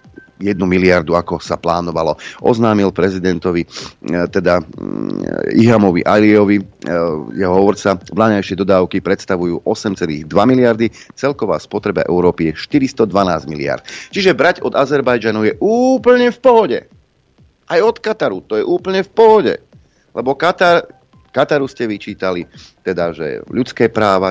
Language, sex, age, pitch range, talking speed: Slovak, male, 30-49, 85-125 Hz, 120 wpm